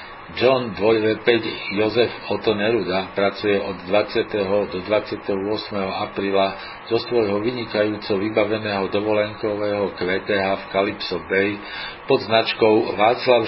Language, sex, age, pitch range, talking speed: Slovak, male, 50-69, 95-115 Hz, 100 wpm